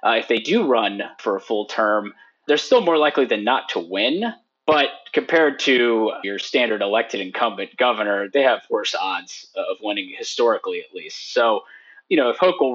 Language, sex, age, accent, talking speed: English, male, 30-49, American, 185 wpm